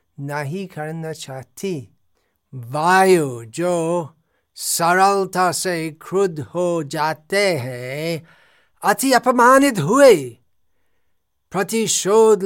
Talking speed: 70 wpm